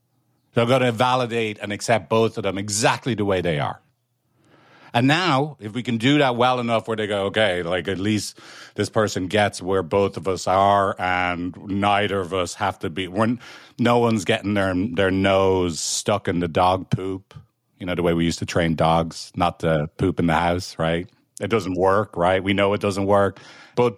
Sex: male